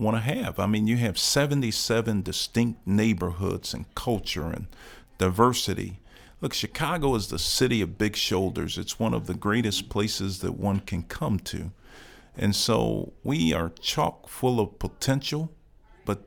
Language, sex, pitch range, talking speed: English, male, 100-120 Hz, 155 wpm